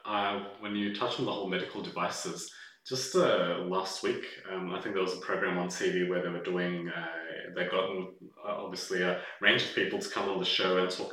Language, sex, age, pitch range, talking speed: English, male, 30-49, 90-95 Hz, 225 wpm